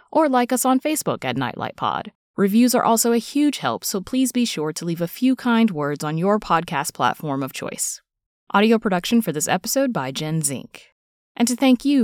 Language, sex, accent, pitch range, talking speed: English, female, American, 155-235 Hz, 210 wpm